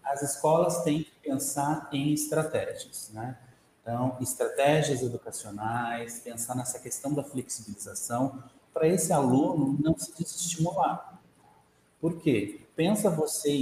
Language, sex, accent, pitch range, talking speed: Portuguese, male, Brazilian, 115-150 Hz, 115 wpm